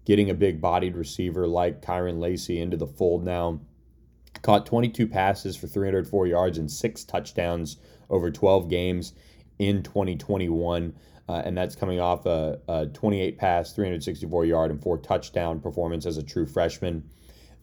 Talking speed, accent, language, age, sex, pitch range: 140 wpm, American, English, 20-39, male, 80-95 Hz